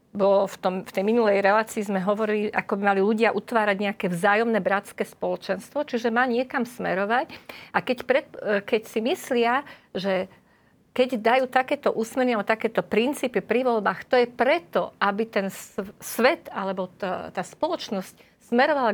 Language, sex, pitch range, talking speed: Slovak, female, 200-245 Hz, 160 wpm